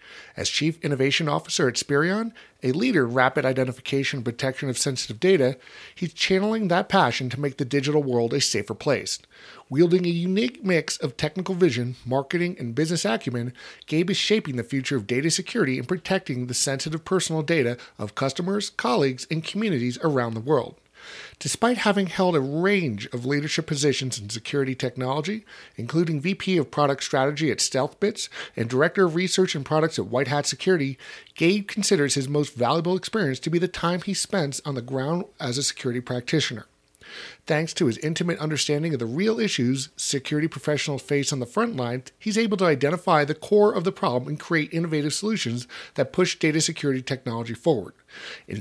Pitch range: 130-185 Hz